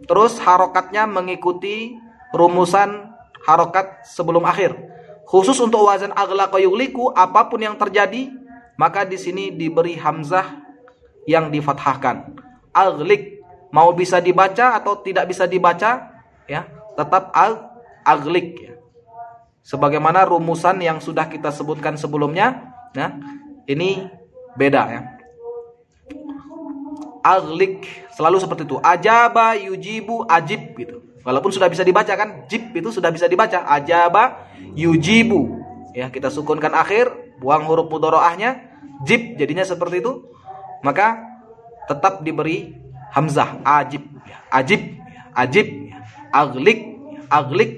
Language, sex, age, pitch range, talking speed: Arabic, male, 20-39, 165-235 Hz, 105 wpm